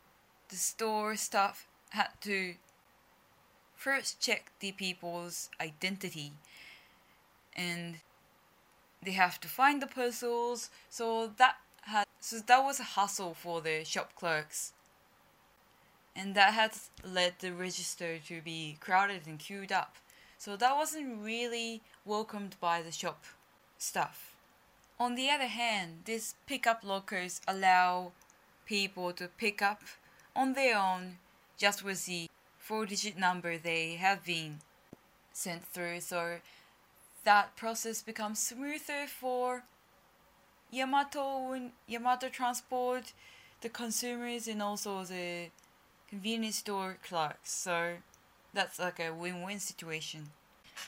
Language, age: Japanese, 10-29